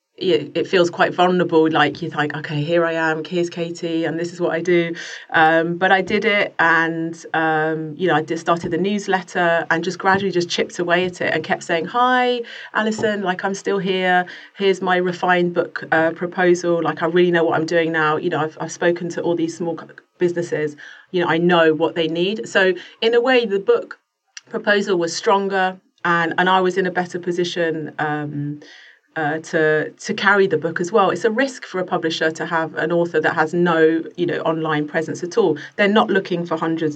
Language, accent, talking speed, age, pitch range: English, British, 215 wpm, 30-49, 160-180 Hz